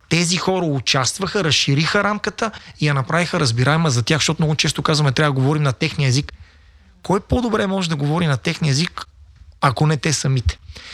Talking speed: 180 wpm